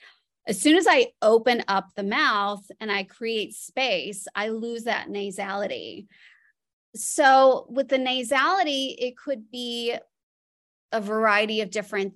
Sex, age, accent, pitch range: female, 30-49, American, 200-250 Hz